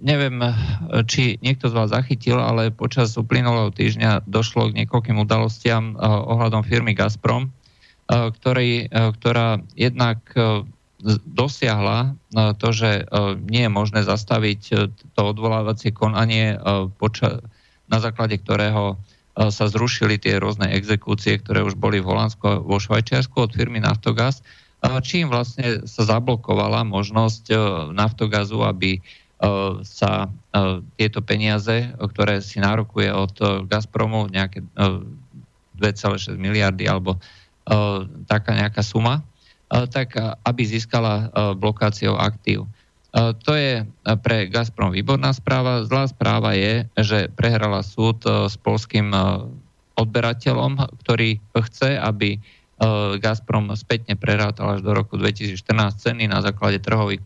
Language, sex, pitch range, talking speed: Slovak, male, 105-115 Hz, 105 wpm